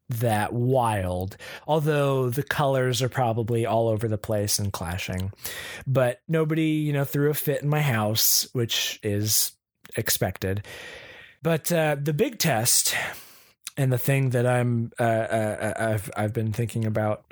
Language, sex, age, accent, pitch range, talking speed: English, male, 20-39, American, 110-150 Hz, 145 wpm